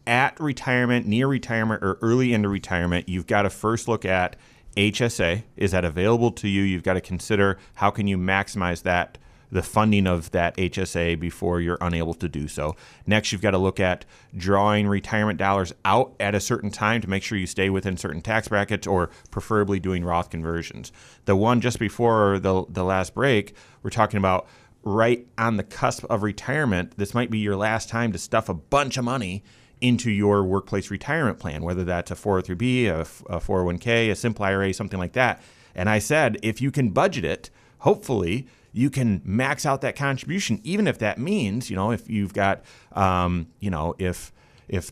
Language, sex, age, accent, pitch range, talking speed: English, male, 30-49, American, 95-115 Hz, 190 wpm